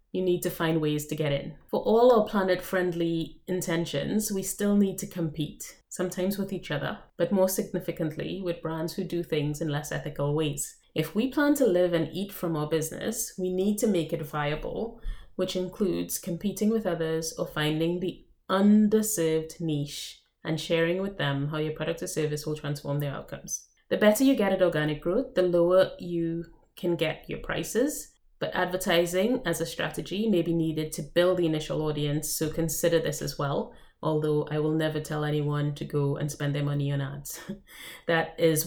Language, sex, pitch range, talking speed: English, female, 150-185 Hz, 190 wpm